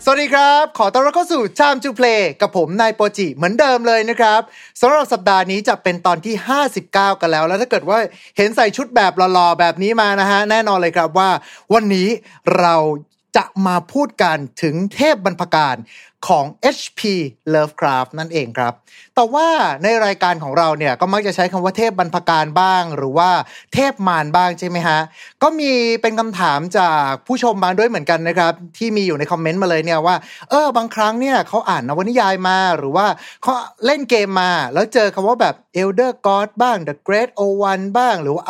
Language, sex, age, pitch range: Thai, male, 30-49, 170-225 Hz